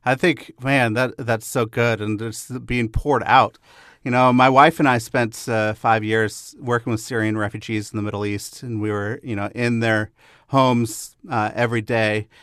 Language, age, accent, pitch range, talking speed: English, 40-59, American, 115-135 Hz, 200 wpm